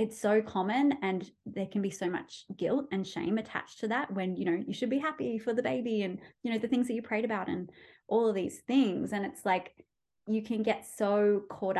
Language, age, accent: English, 20-39, Australian